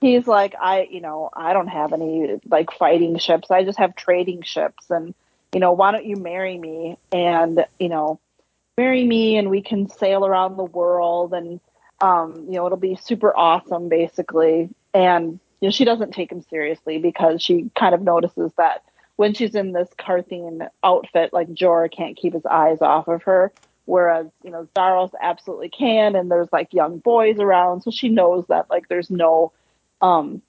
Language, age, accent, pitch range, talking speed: English, 30-49, American, 165-195 Hz, 185 wpm